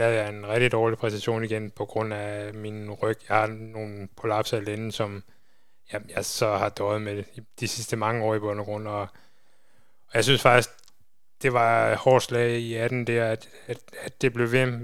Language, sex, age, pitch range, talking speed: Danish, male, 20-39, 110-125 Hz, 190 wpm